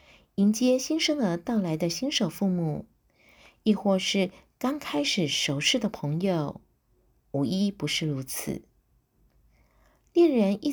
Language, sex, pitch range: Chinese, female, 155-220 Hz